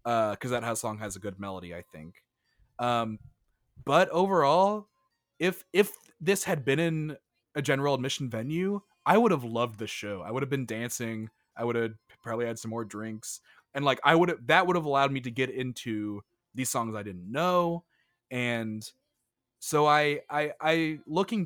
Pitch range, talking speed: 110-150 Hz, 185 wpm